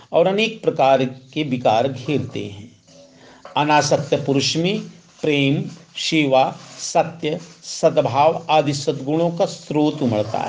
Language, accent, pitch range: Hindi, native, 130-175 Hz